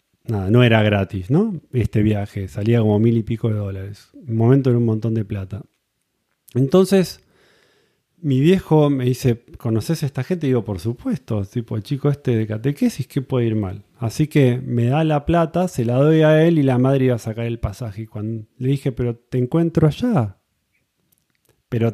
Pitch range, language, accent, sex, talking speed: 110-140 Hz, Spanish, Argentinian, male, 195 wpm